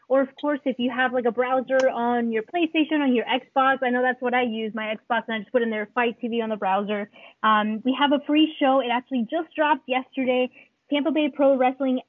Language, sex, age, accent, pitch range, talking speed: English, female, 20-39, American, 225-265 Hz, 245 wpm